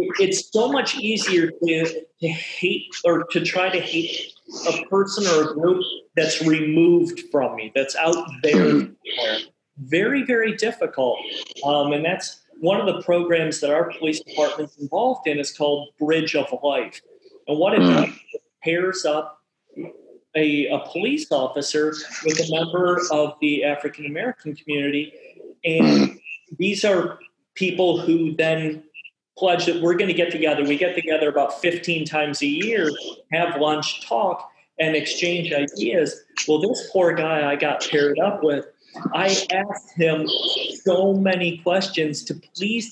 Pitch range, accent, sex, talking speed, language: 155-190 Hz, American, male, 150 wpm, English